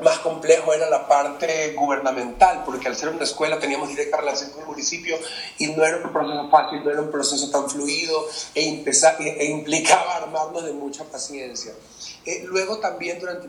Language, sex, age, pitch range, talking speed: English, male, 30-49, 145-175 Hz, 175 wpm